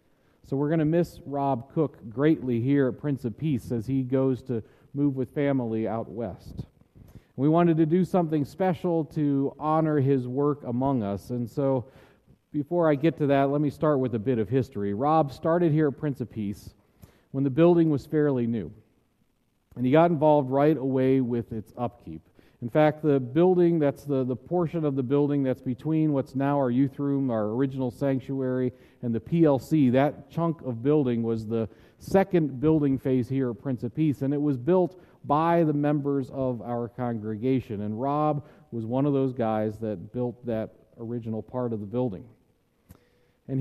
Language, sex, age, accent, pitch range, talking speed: English, male, 40-59, American, 120-150 Hz, 185 wpm